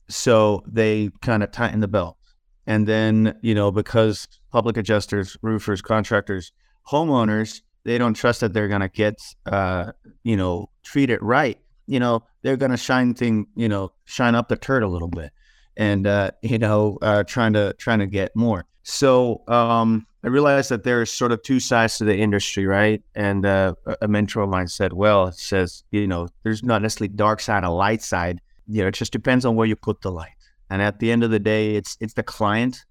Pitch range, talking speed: 100-115 Hz, 205 wpm